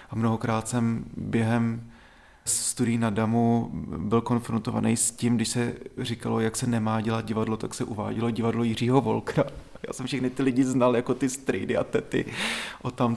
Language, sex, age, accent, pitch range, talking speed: Czech, male, 30-49, native, 115-130 Hz, 175 wpm